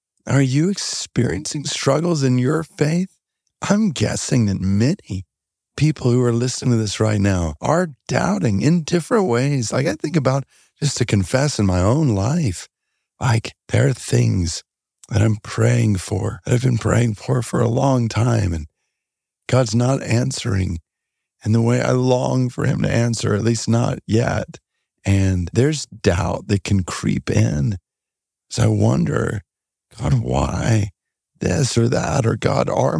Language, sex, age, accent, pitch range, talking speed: English, male, 40-59, American, 100-140 Hz, 160 wpm